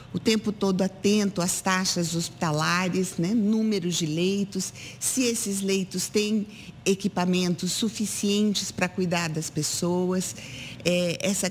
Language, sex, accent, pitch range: Portuguese, female, Brazilian, 170-205 Hz